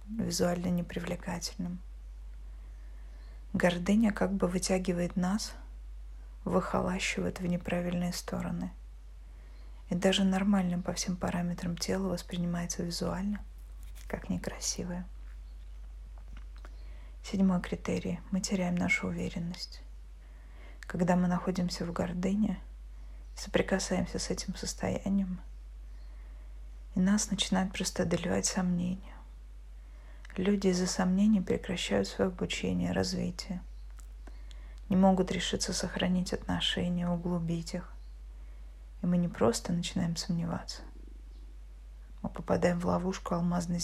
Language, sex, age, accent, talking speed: Russian, female, 20-39, native, 95 wpm